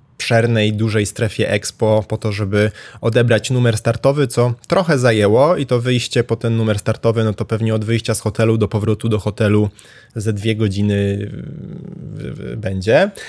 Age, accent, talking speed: 20-39, native, 165 wpm